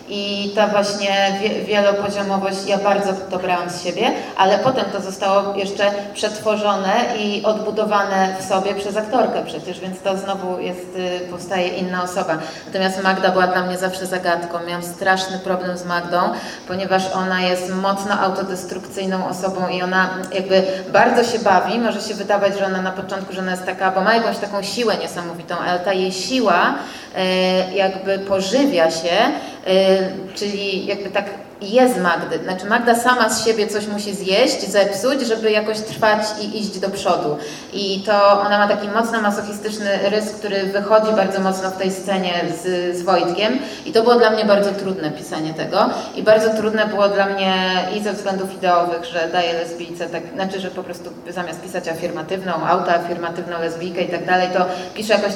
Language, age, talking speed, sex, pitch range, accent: Polish, 30-49, 165 wpm, female, 185-210 Hz, native